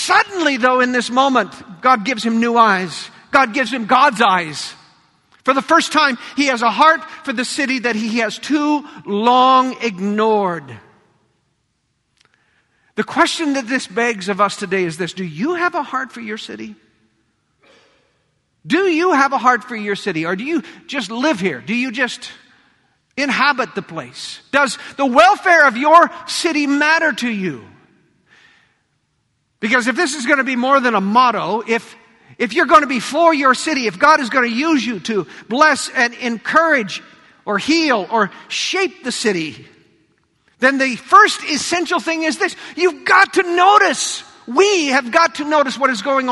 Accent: American